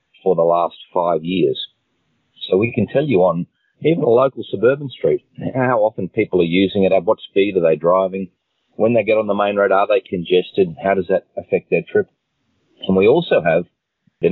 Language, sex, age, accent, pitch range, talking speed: English, male, 40-59, Australian, 85-105 Hz, 205 wpm